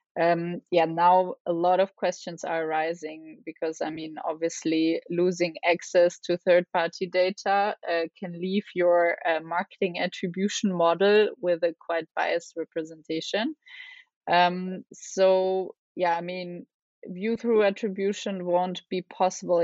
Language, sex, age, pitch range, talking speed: English, female, 20-39, 170-195 Hz, 125 wpm